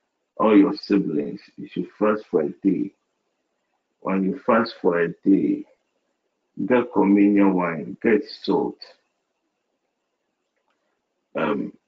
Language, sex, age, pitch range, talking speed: English, male, 50-69, 95-110 Hz, 105 wpm